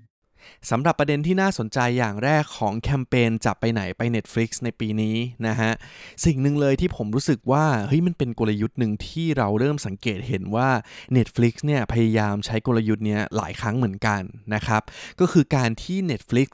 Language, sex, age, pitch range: Thai, male, 20-39, 110-135 Hz